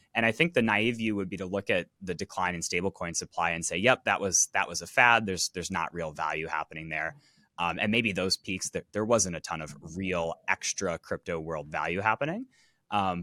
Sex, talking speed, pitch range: male, 225 wpm, 85-105 Hz